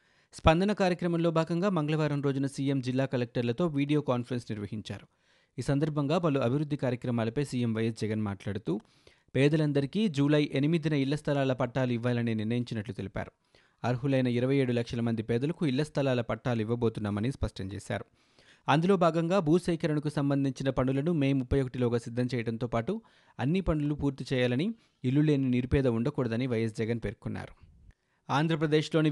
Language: Telugu